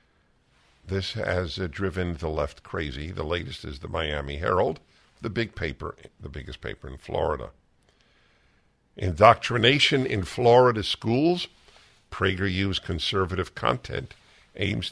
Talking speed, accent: 120 wpm, American